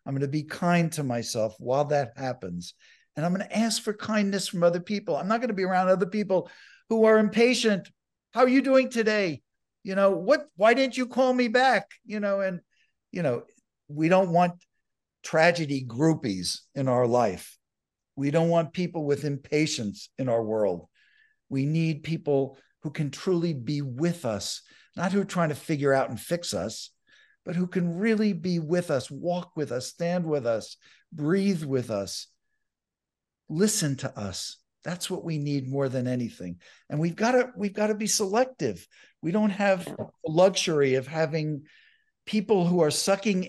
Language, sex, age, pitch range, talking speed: English, male, 60-79, 140-200 Hz, 180 wpm